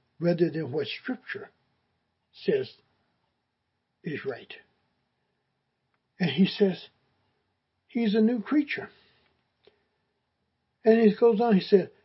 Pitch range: 195-265 Hz